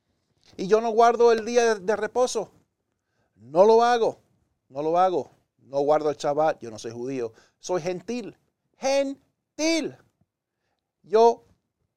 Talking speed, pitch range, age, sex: 130 wpm, 140-235 Hz, 50-69, male